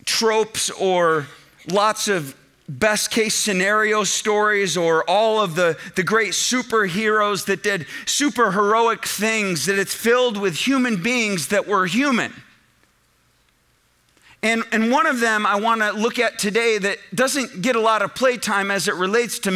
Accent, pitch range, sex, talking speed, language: American, 205-245 Hz, male, 155 wpm, English